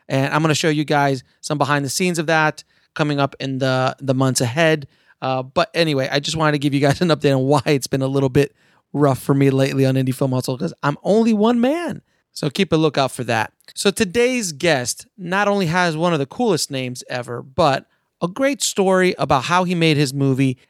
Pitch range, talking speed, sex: 140-175 Hz, 230 wpm, male